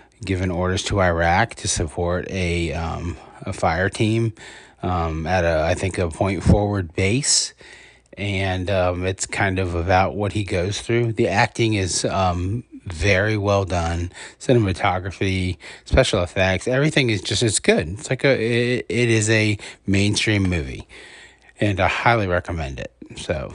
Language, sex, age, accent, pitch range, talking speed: English, male, 30-49, American, 90-105 Hz, 155 wpm